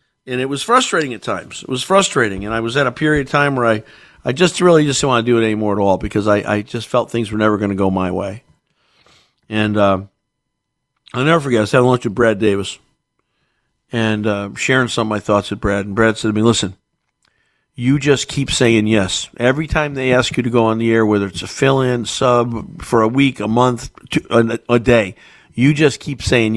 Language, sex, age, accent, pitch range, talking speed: English, male, 50-69, American, 105-135 Hz, 235 wpm